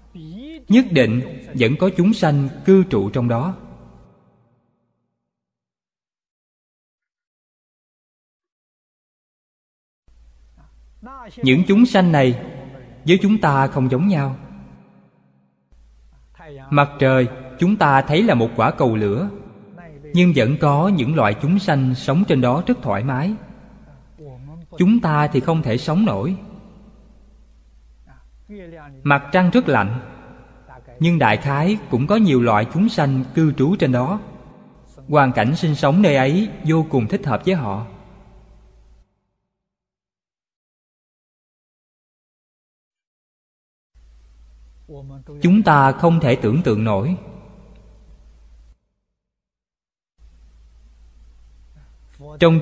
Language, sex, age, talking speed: Vietnamese, male, 20-39, 100 wpm